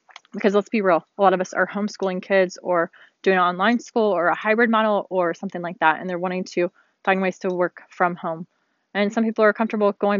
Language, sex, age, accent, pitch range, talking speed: English, female, 20-39, American, 185-220 Hz, 235 wpm